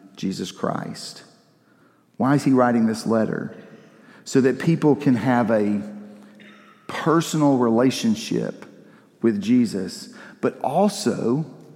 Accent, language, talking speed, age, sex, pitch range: American, English, 100 wpm, 50-69, male, 115-155 Hz